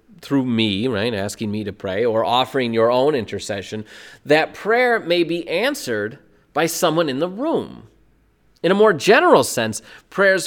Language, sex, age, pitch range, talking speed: English, male, 30-49, 115-190 Hz, 160 wpm